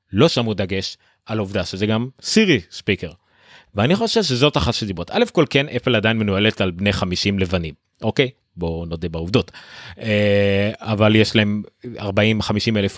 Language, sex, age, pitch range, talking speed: Hebrew, male, 30-49, 105-155 Hz, 150 wpm